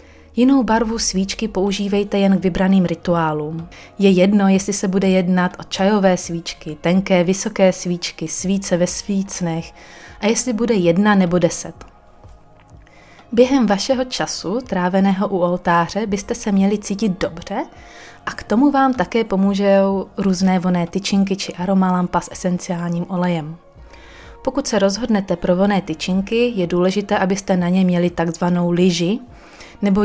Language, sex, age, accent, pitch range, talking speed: Czech, female, 30-49, native, 175-205 Hz, 140 wpm